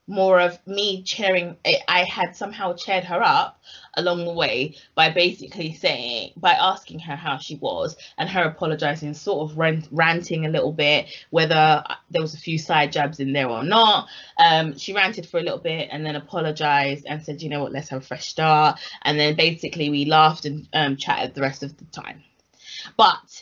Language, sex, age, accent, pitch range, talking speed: English, female, 20-39, British, 155-230 Hz, 195 wpm